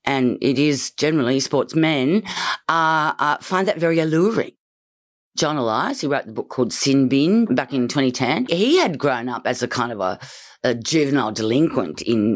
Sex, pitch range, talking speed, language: female, 125-155 Hz, 180 wpm, English